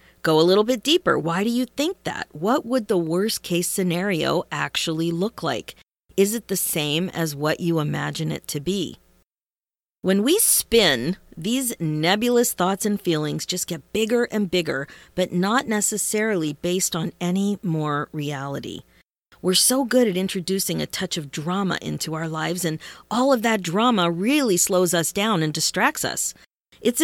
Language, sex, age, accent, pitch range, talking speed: English, female, 40-59, American, 165-215 Hz, 170 wpm